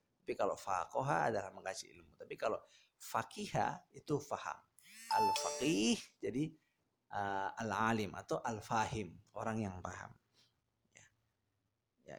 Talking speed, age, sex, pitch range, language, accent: 125 wpm, 50-69, male, 110-155 Hz, Indonesian, native